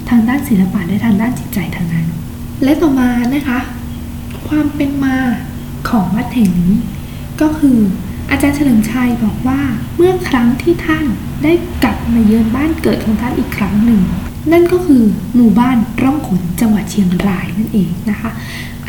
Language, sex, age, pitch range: Thai, female, 10-29, 210-275 Hz